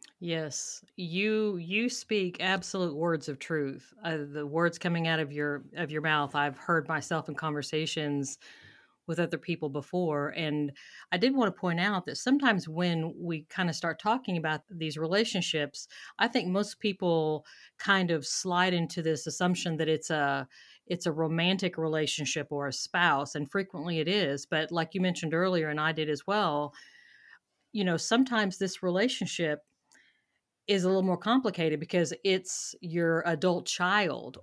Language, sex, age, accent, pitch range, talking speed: English, female, 40-59, American, 155-185 Hz, 165 wpm